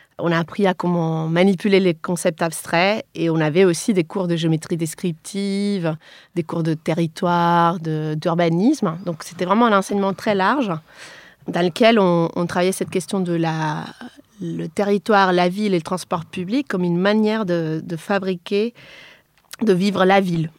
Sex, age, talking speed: female, 30-49, 170 wpm